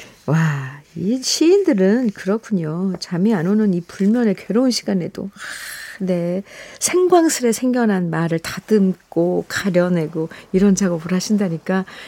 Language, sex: Korean, female